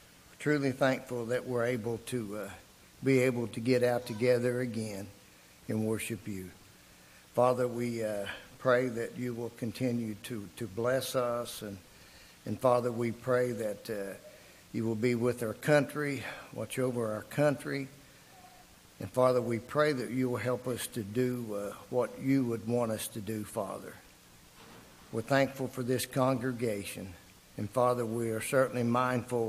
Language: English